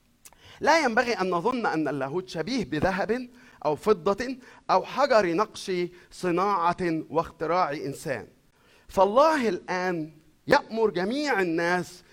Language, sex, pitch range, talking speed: Arabic, male, 145-205 Hz, 105 wpm